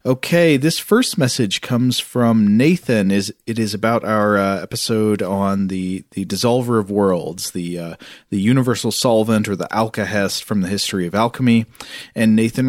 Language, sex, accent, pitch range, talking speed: English, male, American, 100-140 Hz, 160 wpm